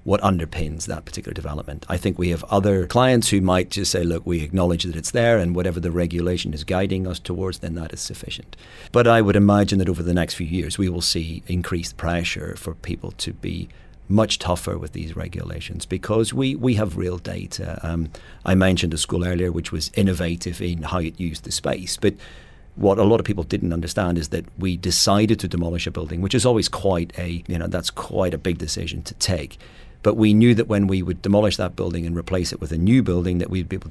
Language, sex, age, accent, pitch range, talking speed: English, male, 40-59, British, 85-100 Hz, 230 wpm